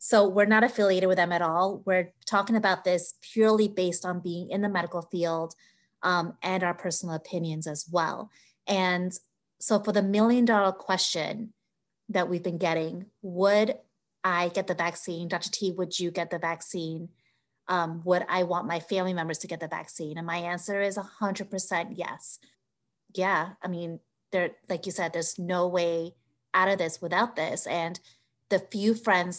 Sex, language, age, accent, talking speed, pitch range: female, English, 30-49, American, 175 wpm, 170-195 Hz